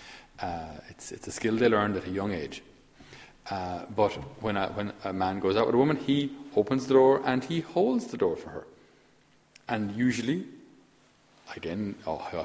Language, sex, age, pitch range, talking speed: English, male, 40-59, 105-135 Hz, 185 wpm